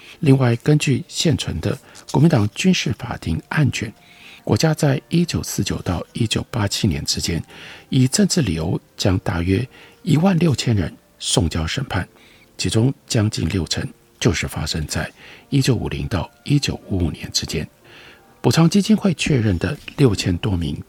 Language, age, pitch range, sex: Chinese, 50-69, 95-145 Hz, male